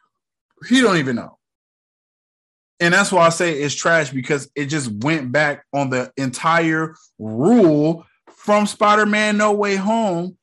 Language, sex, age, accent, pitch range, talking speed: English, male, 20-39, American, 135-180 Hz, 145 wpm